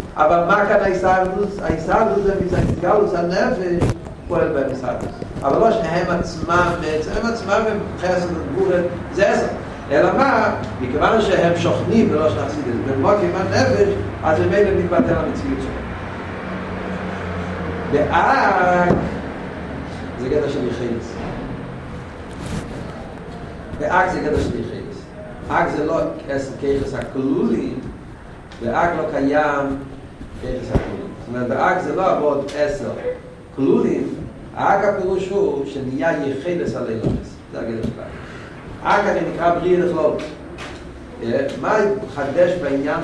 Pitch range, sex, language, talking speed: 135-195 Hz, male, Hebrew, 100 wpm